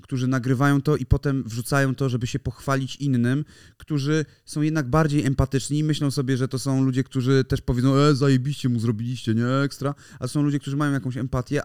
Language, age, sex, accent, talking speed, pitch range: Polish, 30-49, male, native, 205 wpm, 115-140 Hz